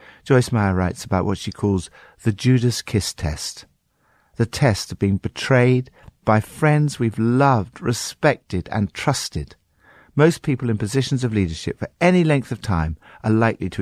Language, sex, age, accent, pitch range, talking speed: English, male, 60-79, British, 90-140 Hz, 160 wpm